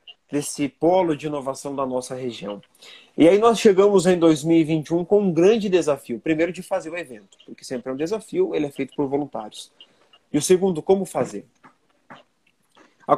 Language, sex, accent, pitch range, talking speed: Portuguese, male, Brazilian, 135-175 Hz, 175 wpm